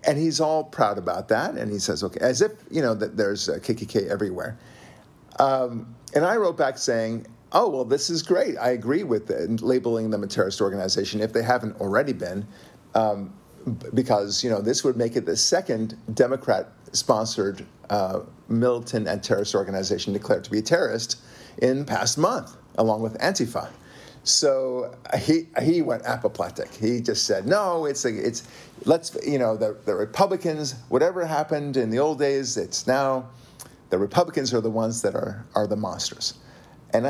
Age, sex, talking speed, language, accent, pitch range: 50-69, male, 175 wpm, English, American, 110-135 Hz